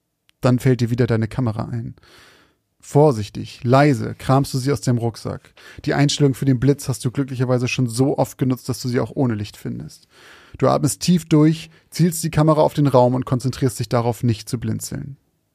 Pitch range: 115-135 Hz